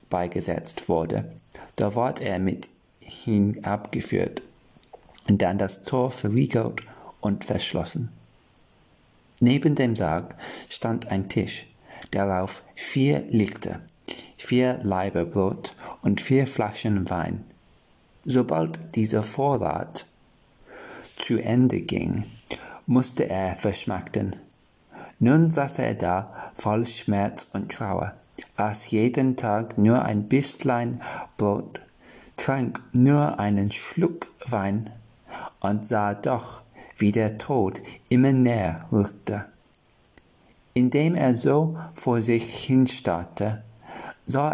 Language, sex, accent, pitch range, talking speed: German, male, German, 100-125 Hz, 100 wpm